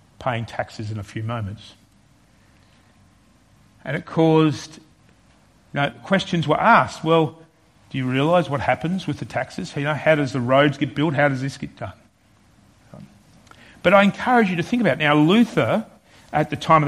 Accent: Australian